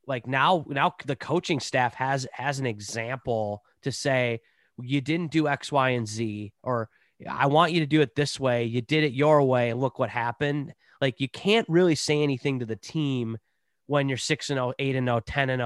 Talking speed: 220 wpm